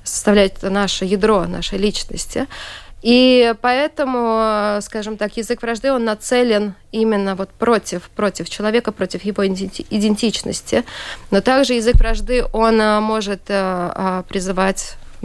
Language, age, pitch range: Russian, 20-39, 195-230 Hz